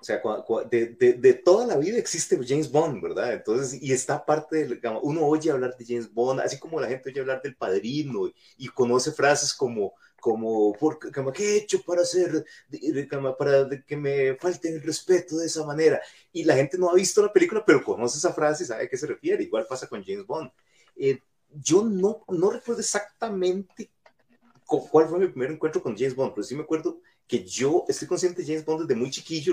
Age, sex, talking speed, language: 30-49, male, 205 wpm, Spanish